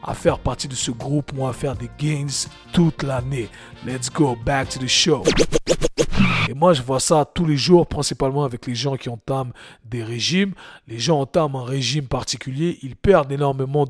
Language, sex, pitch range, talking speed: French, male, 130-165 Hz, 190 wpm